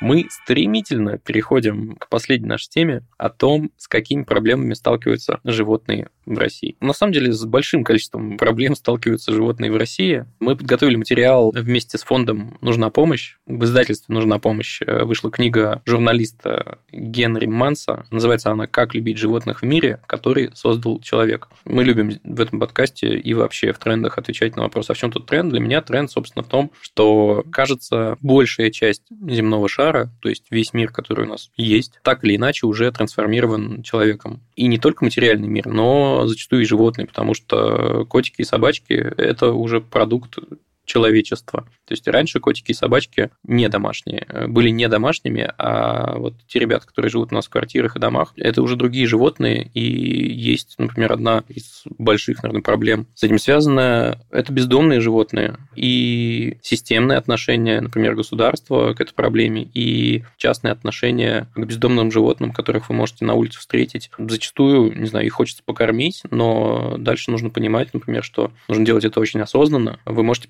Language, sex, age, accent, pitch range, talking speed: Russian, male, 20-39, native, 110-125 Hz, 165 wpm